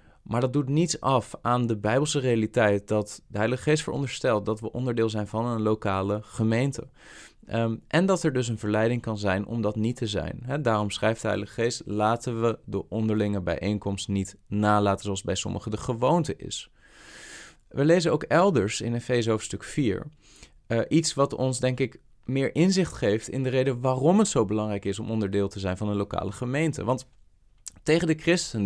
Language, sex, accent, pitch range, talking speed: Dutch, male, Dutch, 105-135 Hz, 195 wpm